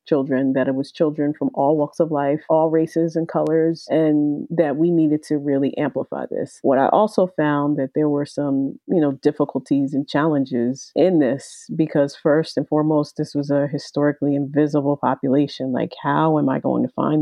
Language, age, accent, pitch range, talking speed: English, 40-59, American, 145-170 Hz, 190 wpm